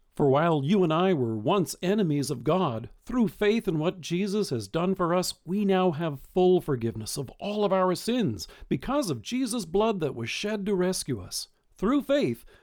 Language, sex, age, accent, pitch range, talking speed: English, male, 50-69, American, 135-195 Hz, 195 wpm